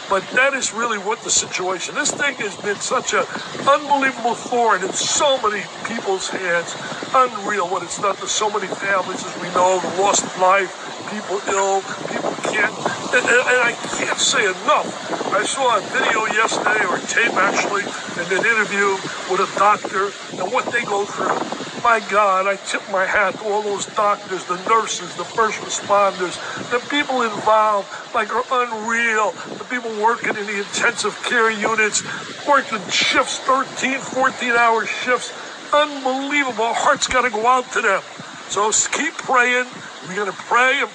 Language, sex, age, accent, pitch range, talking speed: English, male, 60-79, American, 205-250 Hz, 165 wpm